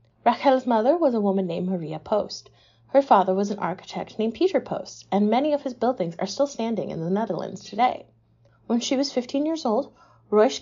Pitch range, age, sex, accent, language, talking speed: 190-250 Hz, 30-49, female, American, English, 200 wpm